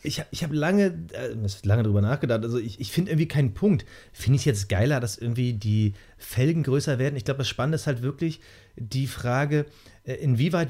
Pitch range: 125-150 Hz